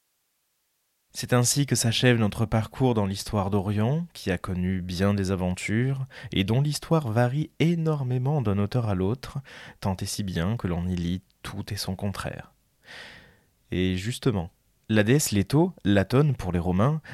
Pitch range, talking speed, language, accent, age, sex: 90-125 Hz, 160 wpm, French, French, 20-39, male